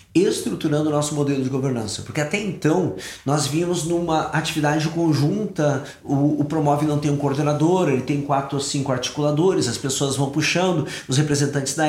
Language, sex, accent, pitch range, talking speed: Portuguese, male, Brazilian, 130-155 Hz, 170 wpm